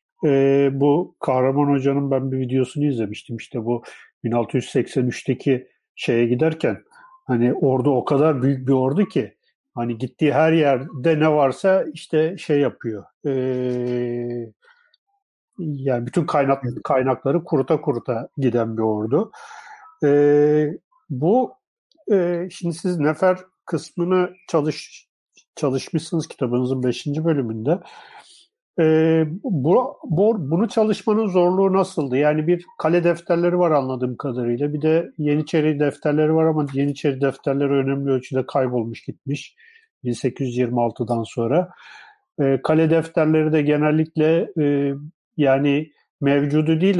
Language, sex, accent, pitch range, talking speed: Turkish, male, native, 135-175 Hz, 115 wpm